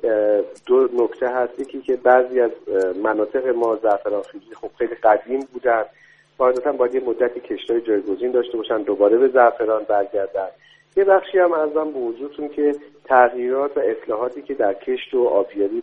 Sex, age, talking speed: male, 50-69, 160 wpm